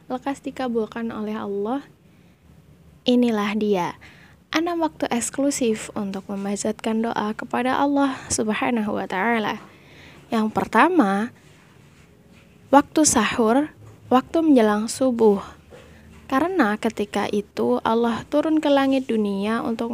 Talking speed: 95 wpm